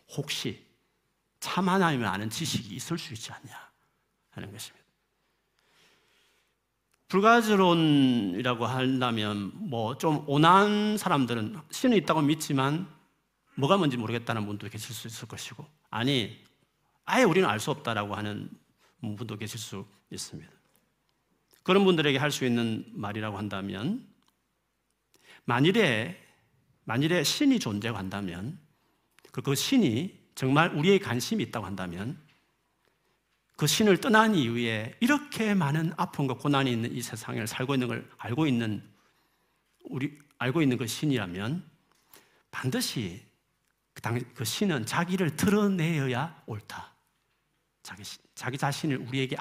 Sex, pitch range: male, 120-175 Hz